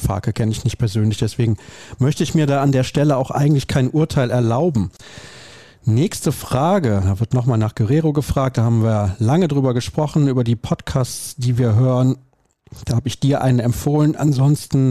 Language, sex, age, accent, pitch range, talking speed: German, male, 40-59, German, 115-150 Hz, 180 wpm